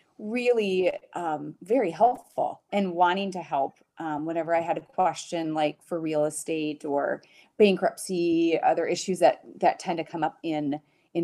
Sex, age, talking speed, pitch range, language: female, 30-49, 160 wpm, 160-195 Hz, English